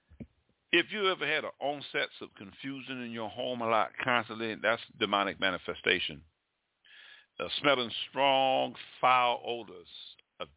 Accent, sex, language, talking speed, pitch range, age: American, male, English, 130 wpm, 100-125 Hz, 50-69